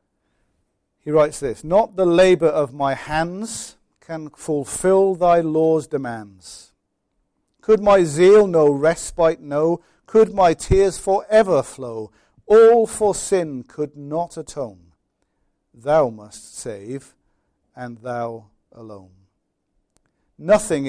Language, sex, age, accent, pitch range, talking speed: English, male, 50-69, British, 105-155 Hz, 110 wpm